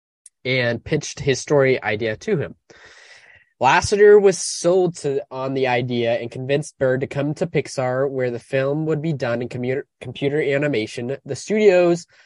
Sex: male